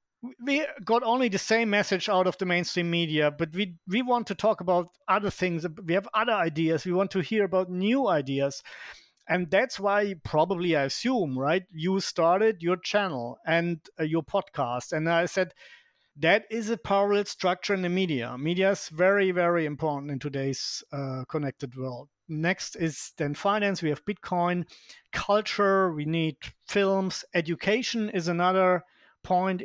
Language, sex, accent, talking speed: English, male, German, 165 wpm